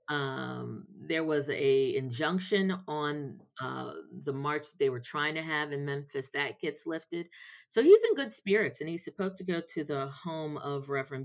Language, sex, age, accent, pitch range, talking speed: English, female, 40-59, American, 140-165 Hz, 185 wpm